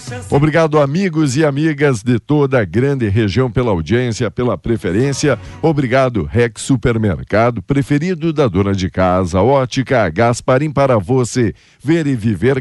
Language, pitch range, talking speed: Portuguese, 115-140 Hz, 135 wpm